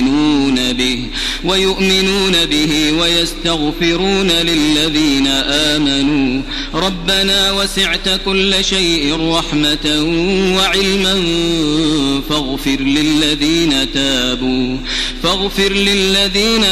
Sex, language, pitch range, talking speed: male, Arabic, 150-190 Hz, 65 wpm